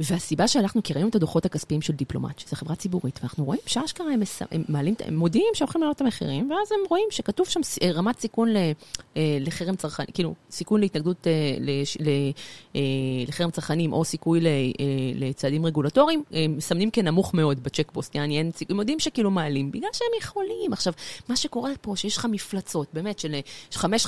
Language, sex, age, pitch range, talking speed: Hebrew, female, 30-49, 155-215 Hz, 160 wpm